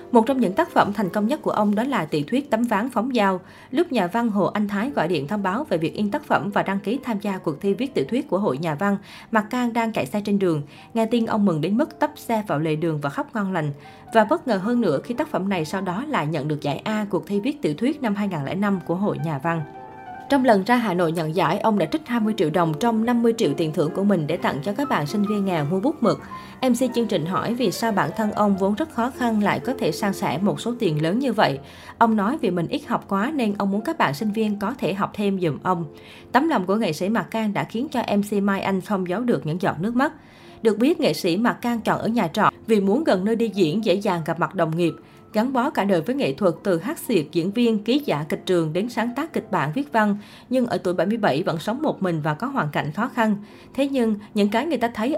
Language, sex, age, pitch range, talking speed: Vietnamese, female, 20-39, 180-235 Hz, 280 wpm